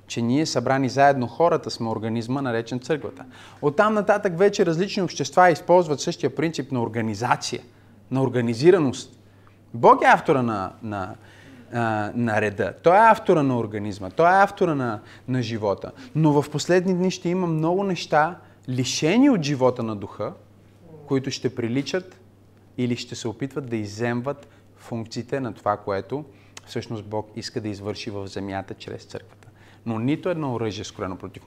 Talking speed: 155 wpm